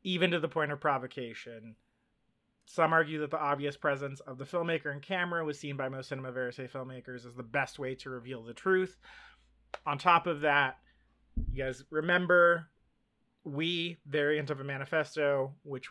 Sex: male